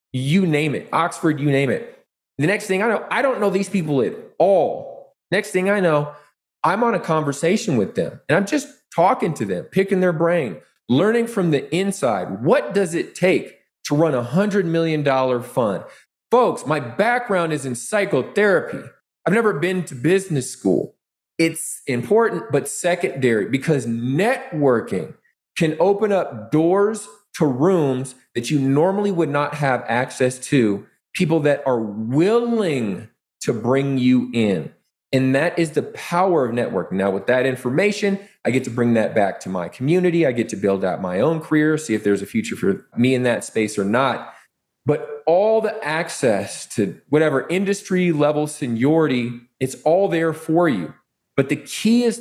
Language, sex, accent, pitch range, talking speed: English, male, American, 130-190 Hz, 170 wpm